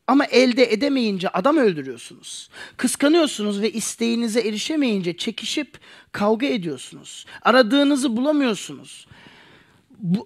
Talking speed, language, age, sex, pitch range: 90 wpm, Turkish, 40-59, male, 185-255 Hz